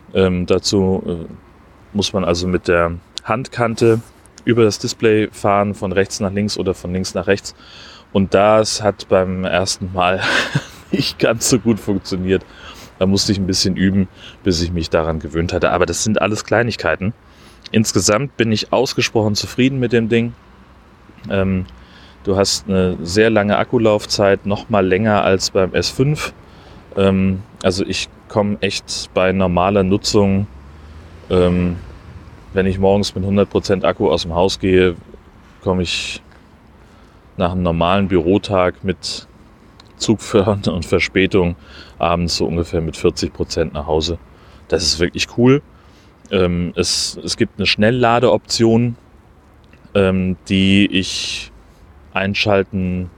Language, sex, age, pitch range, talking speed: German, male, 30-49, 90-105 Hz, 135 wpm